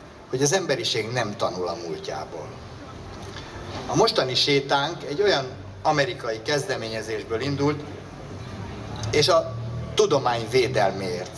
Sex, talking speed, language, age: male, 100 wpm, Hungarian, 60-79